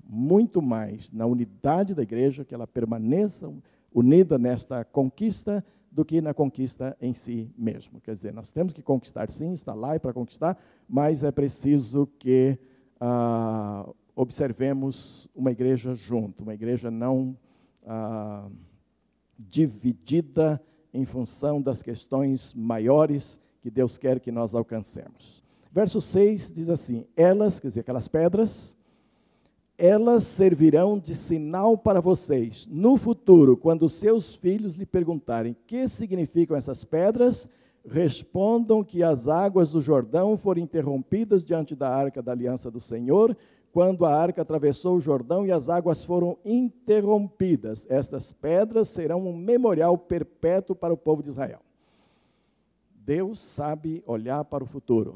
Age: 50-69